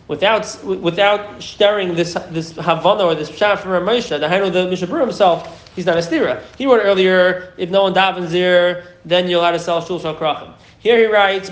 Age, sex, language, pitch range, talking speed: 30-49, male, English, 170-200 Hz, 200 wpm